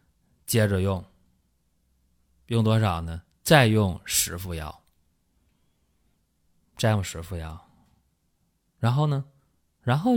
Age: 20-39